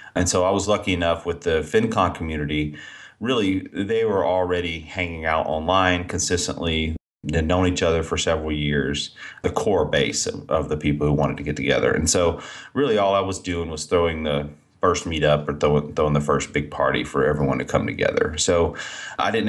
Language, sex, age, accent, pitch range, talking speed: English, male, 30-49, American, 75-95 Hz, 195 wpm